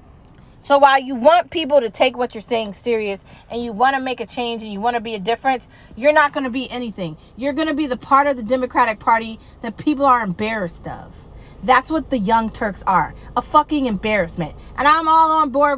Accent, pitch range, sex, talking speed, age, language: American, 225-280 Hz, female, 230 wpm, 30-49, English